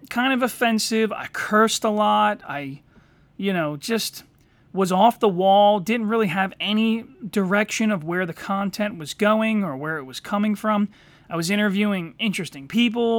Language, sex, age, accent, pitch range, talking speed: English, male, 30-49, American, 150-215 Hz, 170 wpm